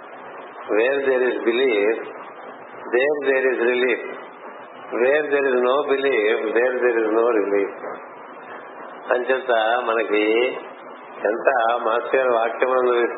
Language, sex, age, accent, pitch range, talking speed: Telugu, male, 50-69, native, 120-135 Hz, 115 wpm